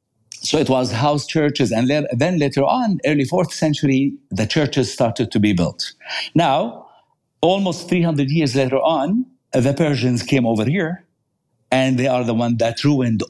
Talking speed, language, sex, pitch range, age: 160 wpm, English, male, 125-160 Hz, 60-79